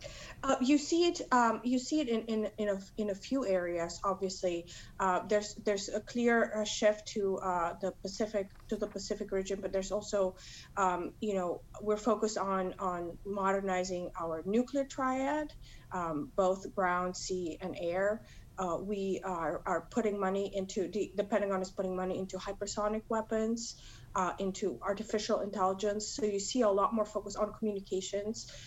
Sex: female